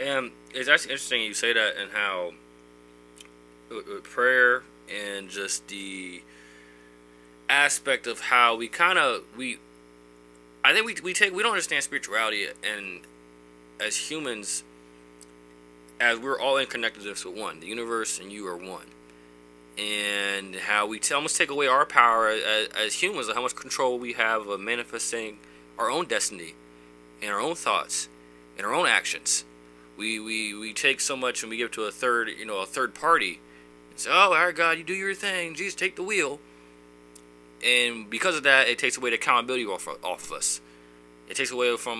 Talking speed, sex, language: 180 wpm, male, English